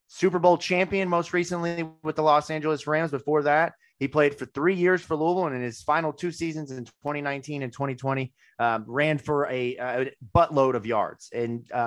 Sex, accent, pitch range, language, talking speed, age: male, American, 115-150 Hz, English, 195 wpm, 30-49